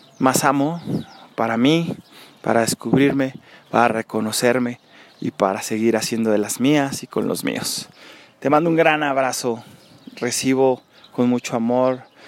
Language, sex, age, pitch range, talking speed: Spanish, male, 30-49, 120-135 Hz, 135 wpm